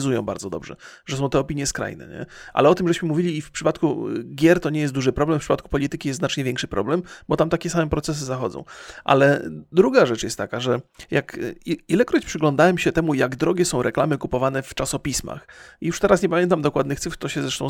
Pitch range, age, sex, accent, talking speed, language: 140-175 Hz, 30-49, male, native, 215 wpm, Polish